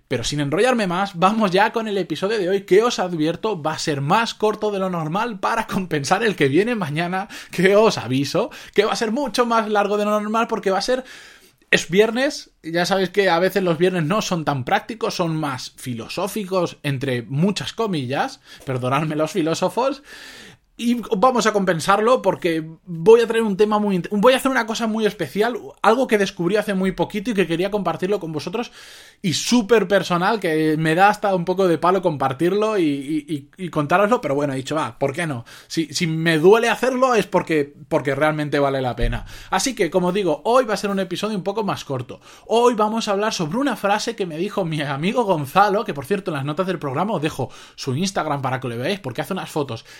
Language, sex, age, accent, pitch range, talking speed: Spanish, male, 20-39, Spanish, 155-215 Hz, 220 wpm